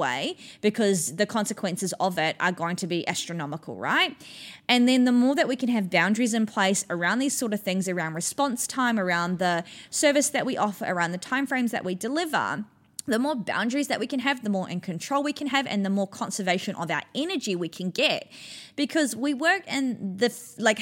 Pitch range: 180-250 Hz